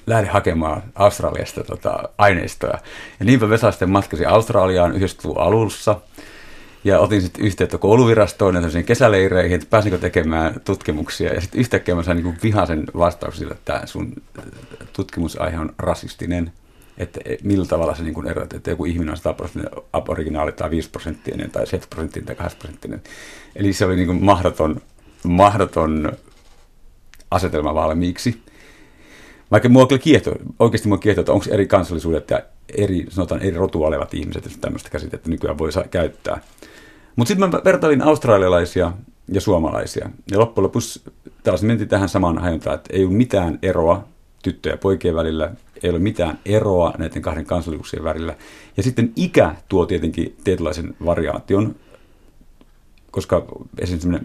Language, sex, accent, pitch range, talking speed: Finnish, male, native, 85-105 Hz, 145 wpm